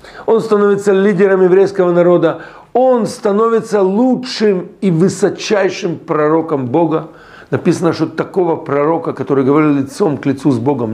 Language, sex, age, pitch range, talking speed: Russian, male, 50-69, 145-210 Hz, 125 wpm